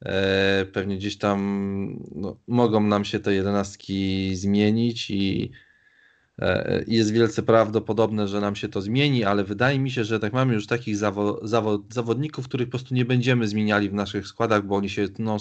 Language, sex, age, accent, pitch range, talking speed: Polish, male, 20-39, native, 95-110 Hz, 175 wpm